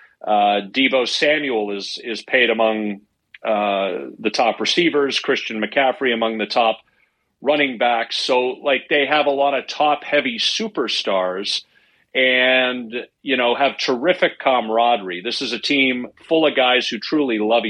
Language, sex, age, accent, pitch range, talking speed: English, male, 40-59, American, 105-135 Hz, 145 wpm